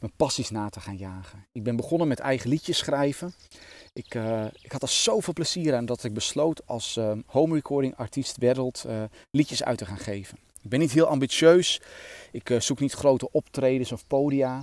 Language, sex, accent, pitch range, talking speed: Dutch, male, Dutch, 115-150 Hz, 195 wpm